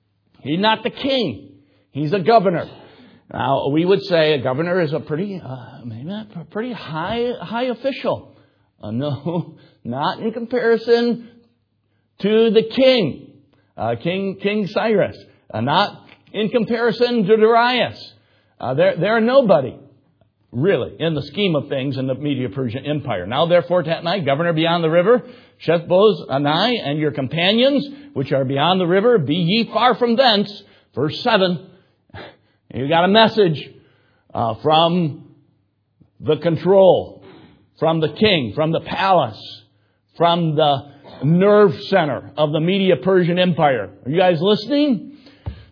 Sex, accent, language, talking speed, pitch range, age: male, American, English, 145 wpm, 135-210 Hz, 60-79